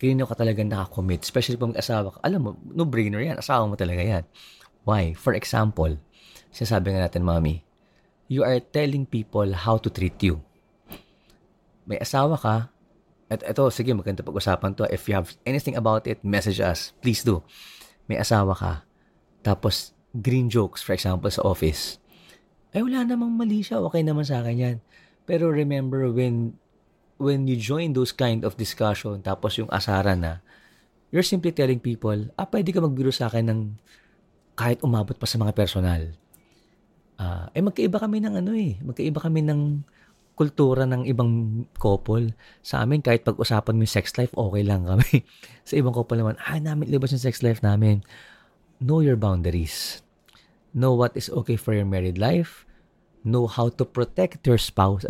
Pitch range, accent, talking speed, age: 100-135 Hz, native, 165 wpm, 20-39